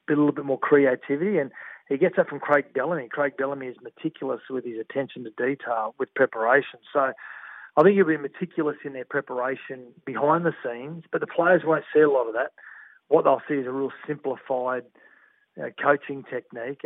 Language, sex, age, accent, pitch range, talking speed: English, male, 40-59, Australian, 130-160 Hz, 190 wpm